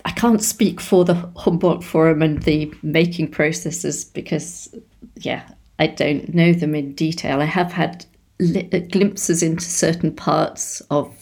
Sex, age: female, 40-59